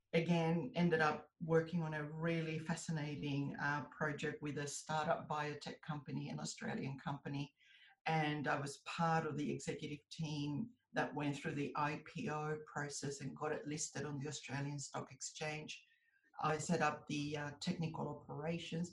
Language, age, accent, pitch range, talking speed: English, 50-69, Australian, 150-170 Hz, 150 wpm